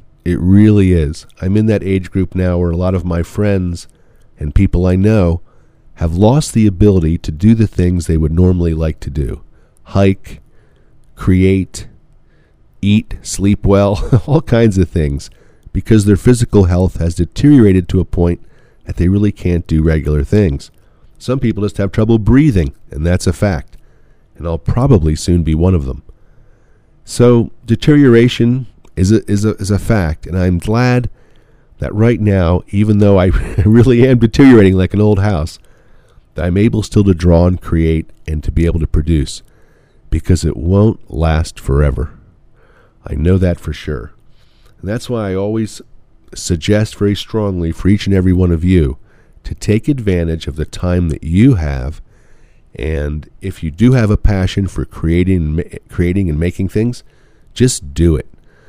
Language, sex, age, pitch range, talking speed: English, male, 40-59, 85-110 Hz, 170 wpm